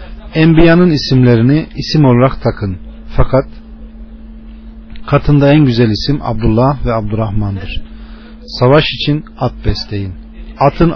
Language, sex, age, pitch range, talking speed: Turkish, male, 40-59, 110-150 Hz, 100 wpm